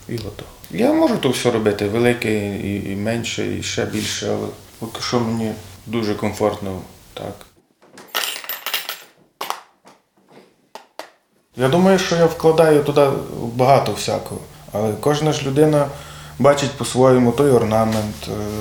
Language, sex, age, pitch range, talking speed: Ukrainian, male, 20-39, 105-125 Hz, 115 wpm